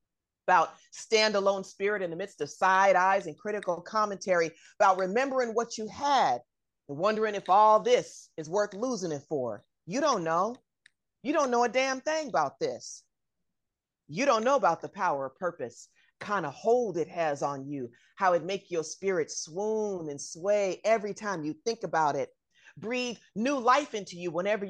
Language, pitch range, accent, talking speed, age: English, 175-245 Hz, American, 175 wpm, 30-49